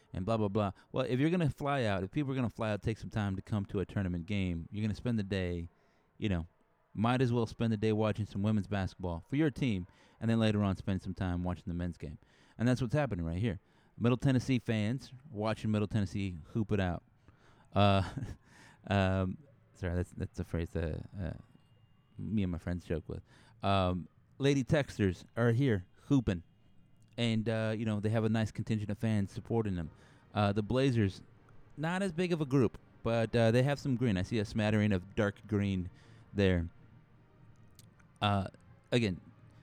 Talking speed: 200 wpm